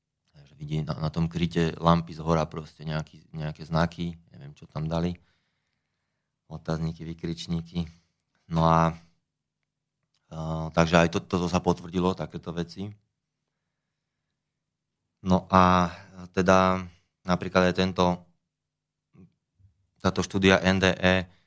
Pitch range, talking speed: 80-90 Hz, 105 wpm